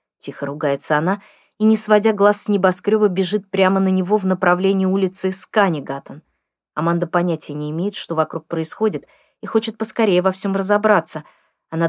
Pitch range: 170-210 Hz